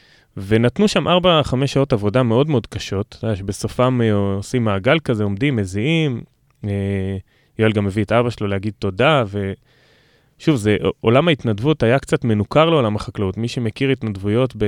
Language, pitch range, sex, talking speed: Hebrew, 100-135 Hz, male, 140 wpm